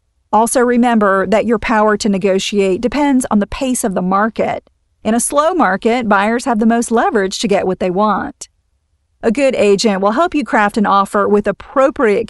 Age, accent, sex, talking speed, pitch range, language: 40-59, American, female, 190 wpm, 195-245 Hz, English